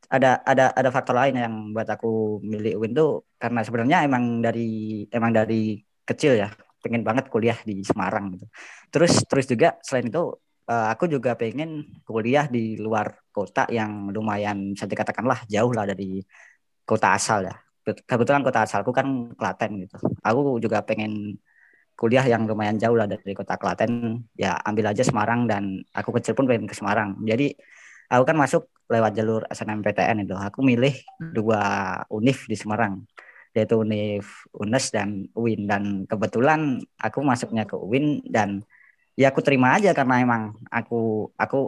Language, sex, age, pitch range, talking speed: Indonesian, female, 20-39, 105-125 Hz, 155 wpm